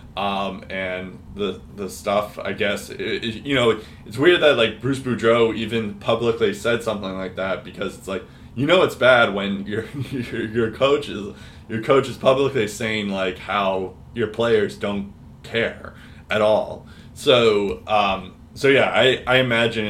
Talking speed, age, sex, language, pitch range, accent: 165 wpm, 20-39, male, English, 100-120 Hz, American